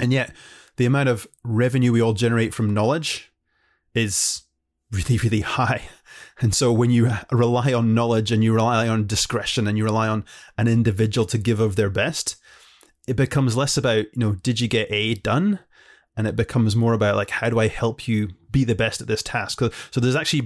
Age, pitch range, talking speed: 30-49, 110-125 Hz, 200 wpm